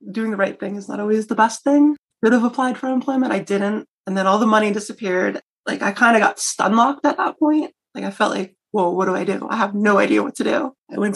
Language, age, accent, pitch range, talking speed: English, 30-49, American, 205-260 Hz, 275 wpm